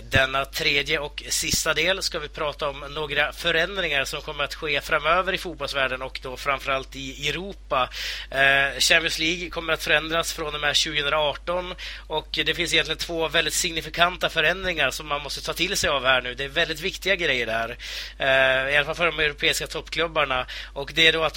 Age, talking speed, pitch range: 30-49, 195 wpm, 140-165 Hz